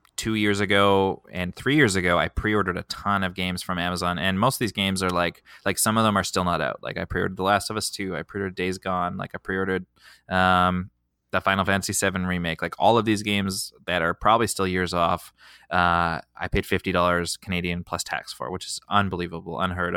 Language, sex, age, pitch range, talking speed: English, male, 20-39, 90-105 Hz, 220 wpm